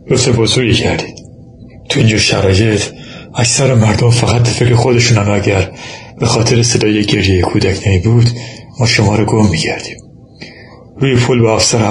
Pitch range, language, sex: 105-120 Hz, Persian, male